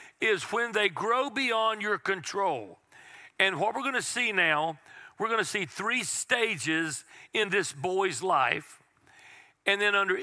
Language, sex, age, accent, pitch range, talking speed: English, male, 50-69, American, 170-215 Hz, 160 wpm